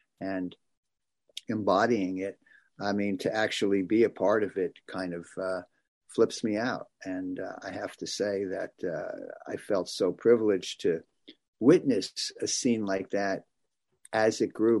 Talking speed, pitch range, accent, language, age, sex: 160 wpm, 100-120 Hz, American, English, 50-69, male